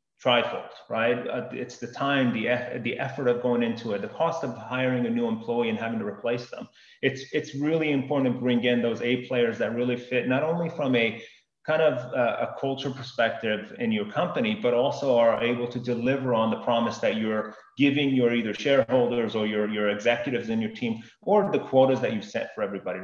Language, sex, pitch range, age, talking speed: English, male, 120-140 Hz, 30-49, 215 wpm